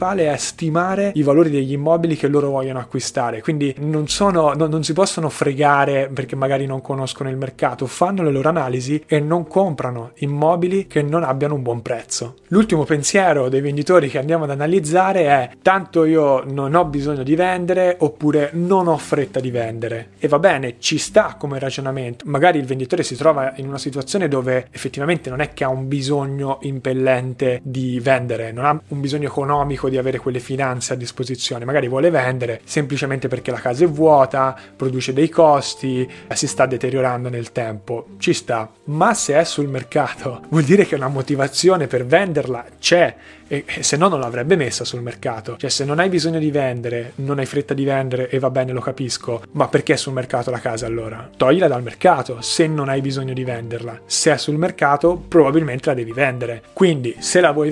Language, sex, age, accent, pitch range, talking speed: Italian, male, 20-39, native, 130-160 Hz, 190 wpm